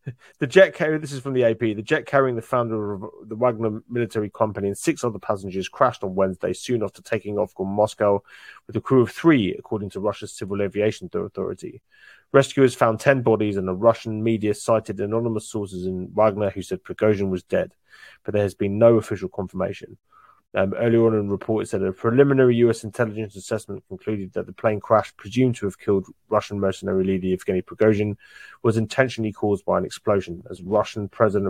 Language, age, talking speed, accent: English, 30-49, 195 wpm, British